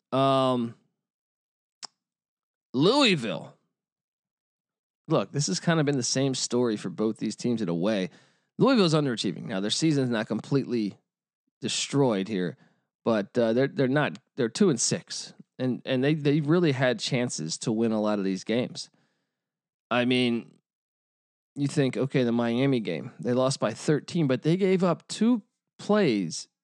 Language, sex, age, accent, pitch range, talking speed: English, male, 20-39, American, 125-175 Hz, 155 wpm